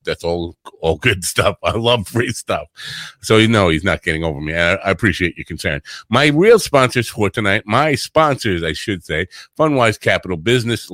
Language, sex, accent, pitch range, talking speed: English, male, American, 95-125 Hz, 190 wpm